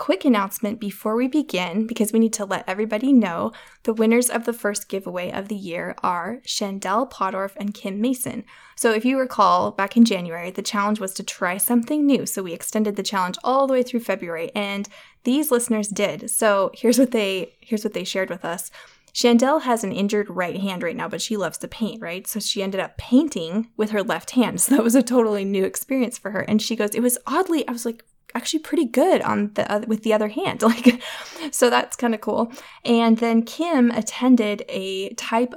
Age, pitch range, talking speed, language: 10-29, 195-235 Hz, 215 wpm, English